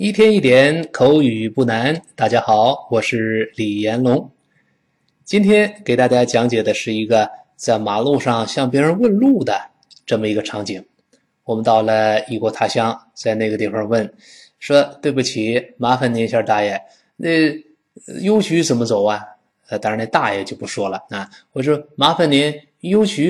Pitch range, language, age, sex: 110-155 Hz, Chinese, 20-39, male